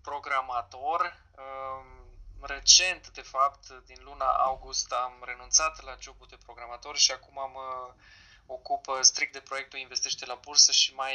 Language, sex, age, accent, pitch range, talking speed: Romanian, male, 20-39, native, 125-140 Hz, 135 wpm